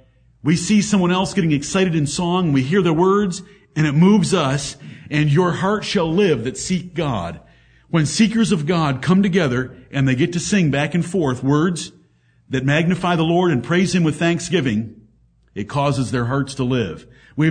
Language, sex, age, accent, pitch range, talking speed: English, male, 50-69, American, 120-175 Hz, 190 wpm